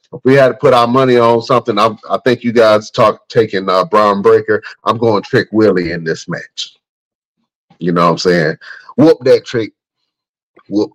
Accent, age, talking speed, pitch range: American, 40-59, 180 wpm, 100-130 Hz